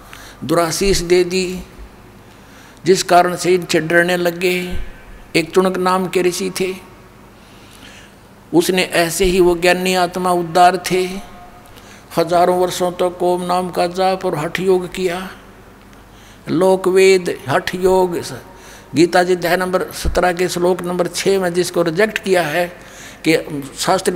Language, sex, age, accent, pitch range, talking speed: Hindi, male, 60-79, native, 165-185 Hz, 130 wpm